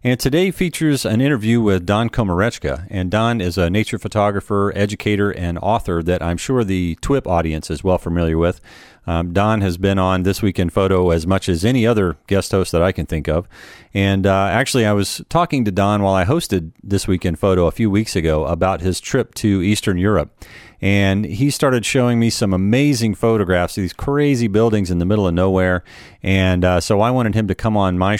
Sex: male